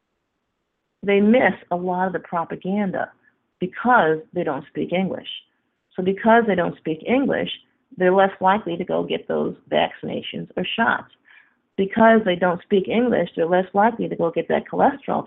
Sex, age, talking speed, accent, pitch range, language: female, 40-59, 160 wpm, American, 165-225 Hz, English